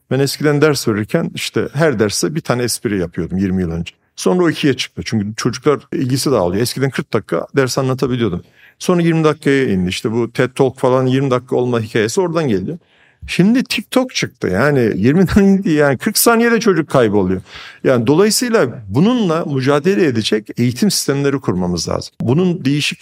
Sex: male